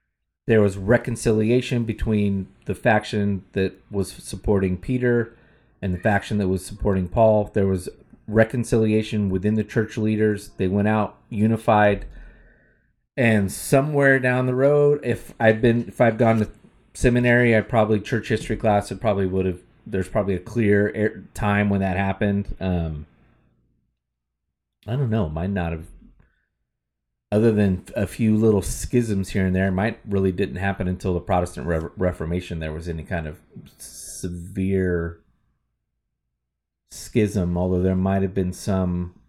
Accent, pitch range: American, 95-115 Hz